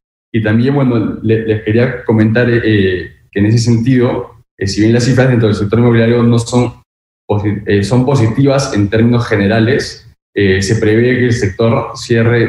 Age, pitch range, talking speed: 20-39, 105-120 Hz, 175 wpm